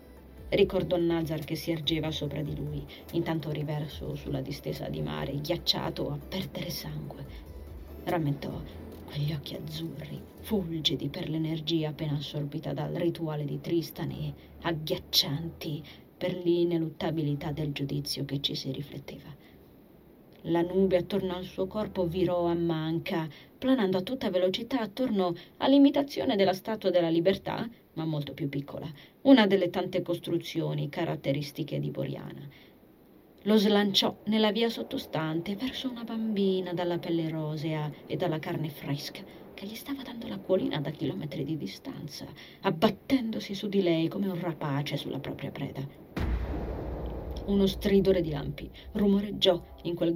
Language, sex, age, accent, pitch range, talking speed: Italian, female, 30-49, native, 150-190 Hz, 135 wpm